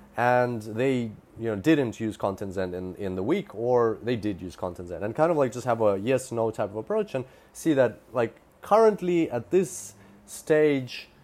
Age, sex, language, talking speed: 30-49, male, English, 190 wpm